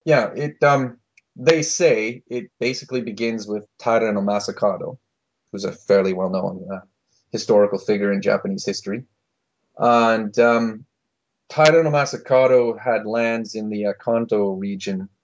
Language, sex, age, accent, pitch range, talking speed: English, male, 30-49, Canadian, 100-115 Hz, 130 wpm